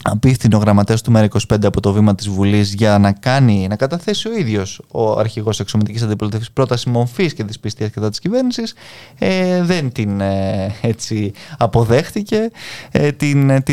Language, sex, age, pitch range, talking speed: Greek, male, 20-39, 105-150 Hz, 140 wpm